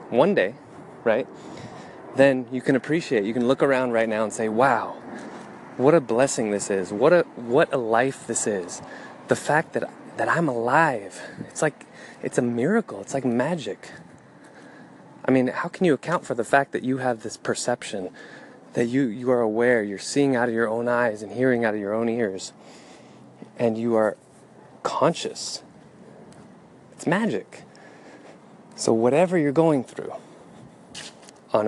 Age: 20-39